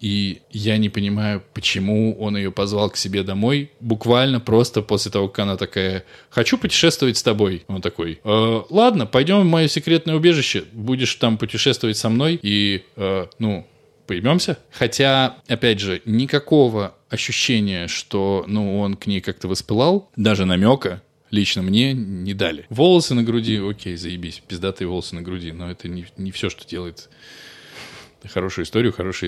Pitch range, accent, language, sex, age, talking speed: 95-135 Hz, native, Russian, male, 20-39, 160 wpm